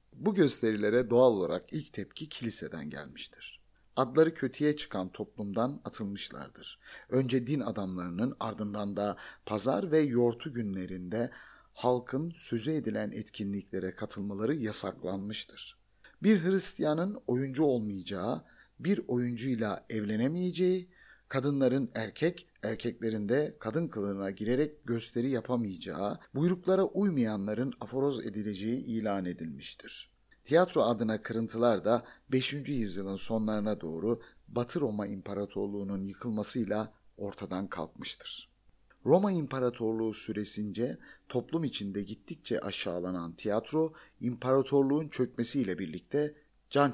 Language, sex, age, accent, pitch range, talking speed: Turkish, male, 50-69, native, 105-140 Hz, 95 wpm